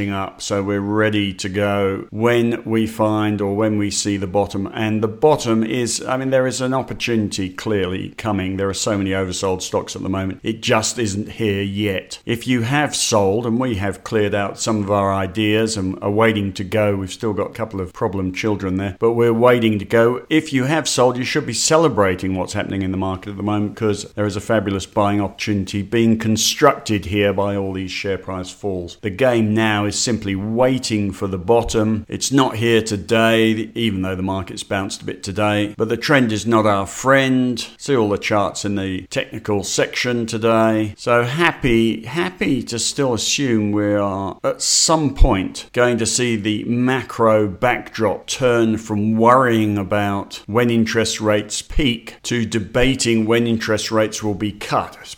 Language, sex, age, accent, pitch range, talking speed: English, male, 50-69, British, 100-115 Hz, 190 wpm